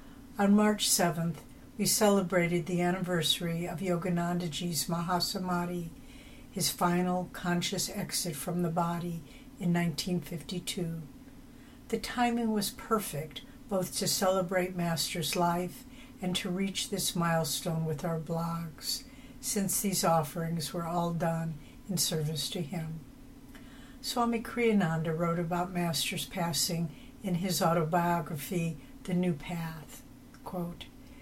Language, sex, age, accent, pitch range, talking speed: English, female, 60-79, American, 165-190 Hz, 115 wpm